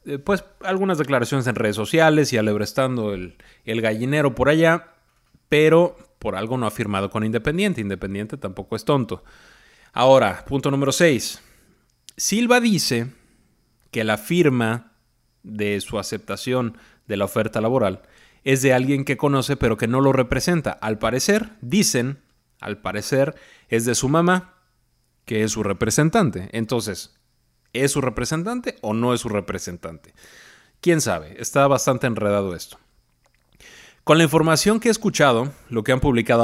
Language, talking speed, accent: Spanish, 145 wpm, Mexican